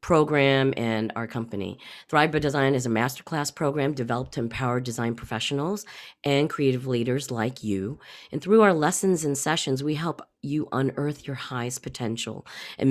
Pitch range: 115-145 Hz